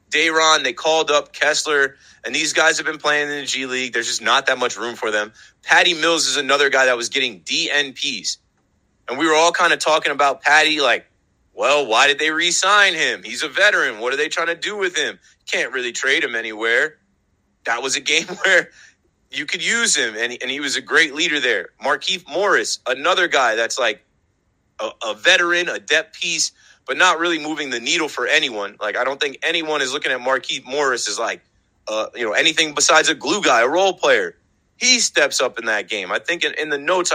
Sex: male